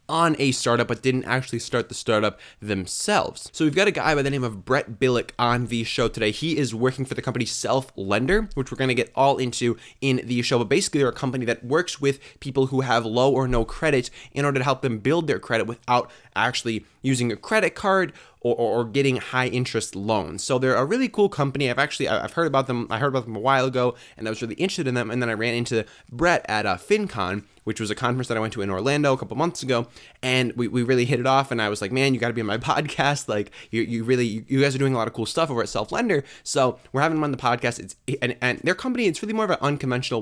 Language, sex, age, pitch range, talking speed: English, male, 20-39, 115-140 Hz, 270 wpm